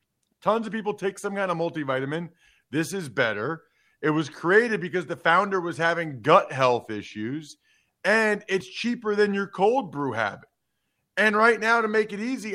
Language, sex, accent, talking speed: English, male, American, 175 wpm